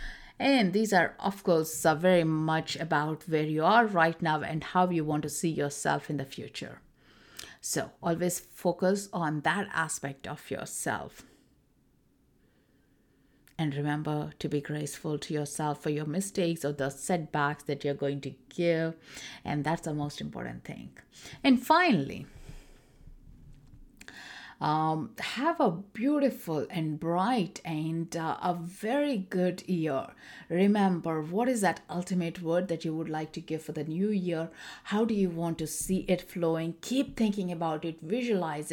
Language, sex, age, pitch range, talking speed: English, female, 60-79, 150-180 Hz, 150 wpm